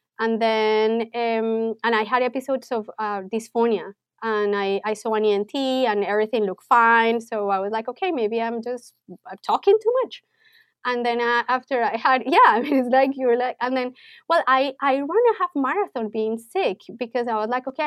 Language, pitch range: English, 215-260 Hz